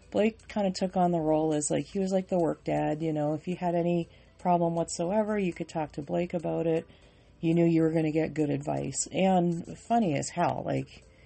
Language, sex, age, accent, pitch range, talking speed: English, female, 40-59, American, 150-175 Hz, 235 wpm